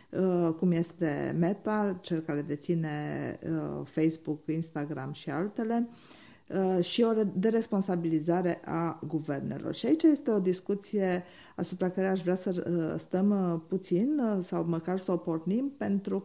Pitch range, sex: 165-205 Hz, female